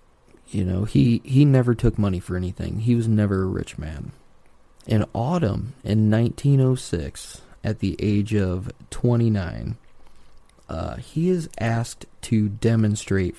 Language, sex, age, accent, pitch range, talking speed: English, male, 20-39, American, 95-120 Hz, 135 wpm